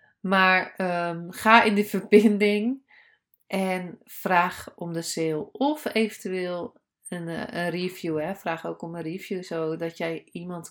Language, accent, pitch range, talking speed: Dutch, Dutch, 170-220 Hz, 130 wpm